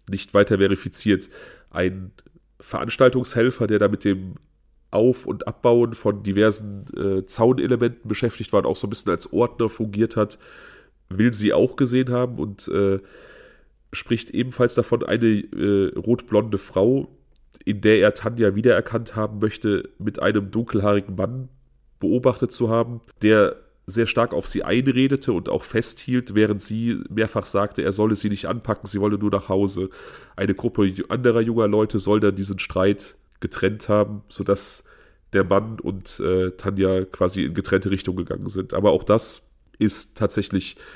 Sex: male